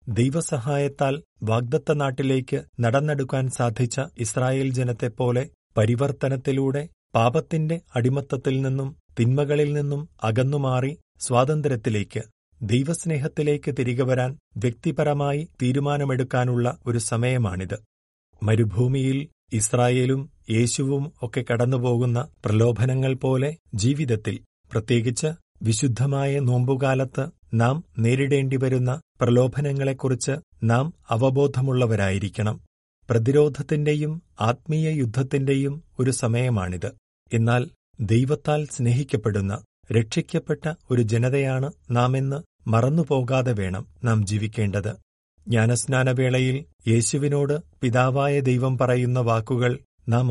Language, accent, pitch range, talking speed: Malayalam, native, 120-140 Hz, 70 wpm